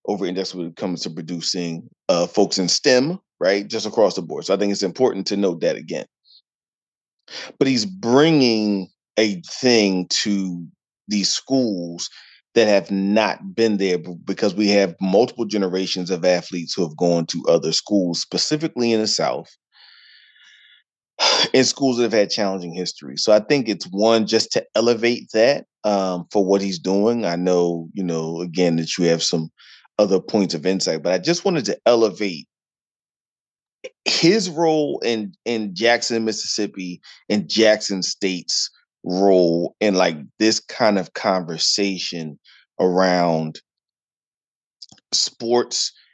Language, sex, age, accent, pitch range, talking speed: English, male, 30-49, American, 90-110 Hz, 145 wpm